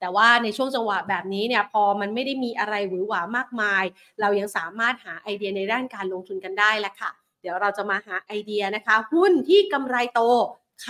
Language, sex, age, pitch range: Thai, female, 30-49, 205-260 Hz